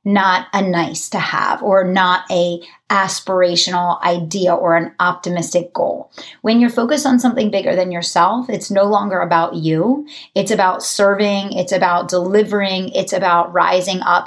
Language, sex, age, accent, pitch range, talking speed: English, female, 30-49, American, 180-215 Hz, 155 wpm